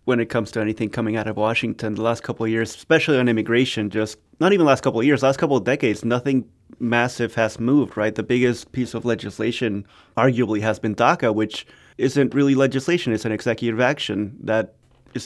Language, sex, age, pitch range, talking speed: English, male, 20-39, 110-130 Hz, 205 wpm